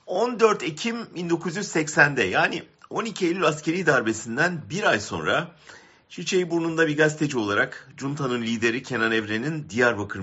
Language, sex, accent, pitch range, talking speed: German, male, Turkish, 95-145 Hz, 125 wpm